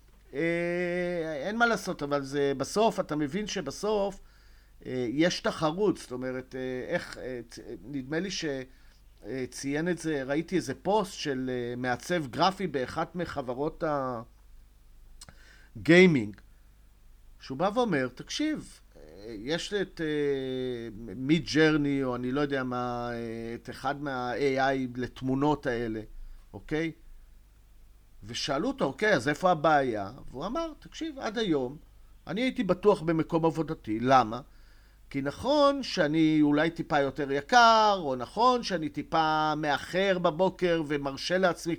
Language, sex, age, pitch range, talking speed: Hebrew, male, 50-69, 120-180 Hz, 120 wpm